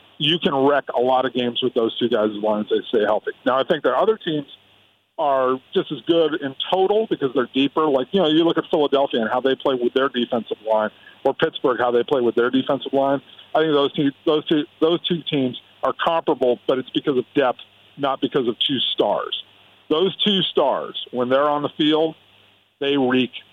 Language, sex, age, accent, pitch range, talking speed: English, male, 50-69, American, 120-145 Hz, 215 wpm